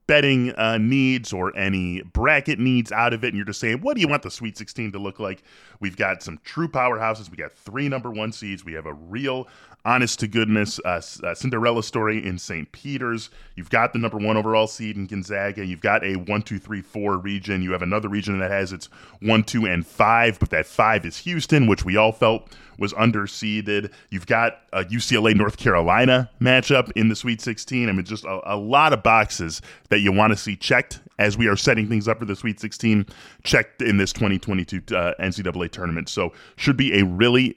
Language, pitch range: English, 100-125 Hz